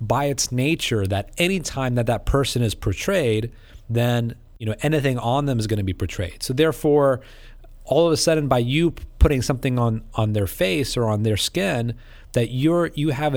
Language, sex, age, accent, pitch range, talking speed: English, male, 30-49, American, 105-135 Hz, 195 wpm